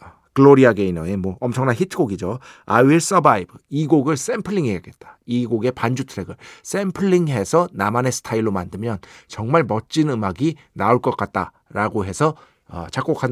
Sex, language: male, Korean